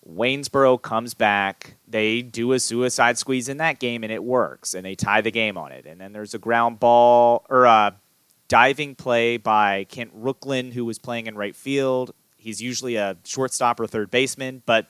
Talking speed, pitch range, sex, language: 195 wpm, 100-125 Hz, male, English